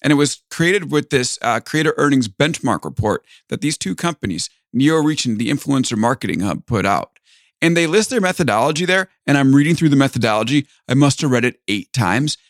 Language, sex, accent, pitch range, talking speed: English, male, American, 110-145 Hz, 205 wpm